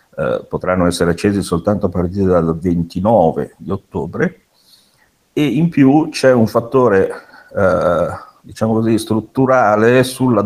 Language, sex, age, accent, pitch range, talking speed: Italian, male, 50-69, native, 90-130 Hz, 125 wpm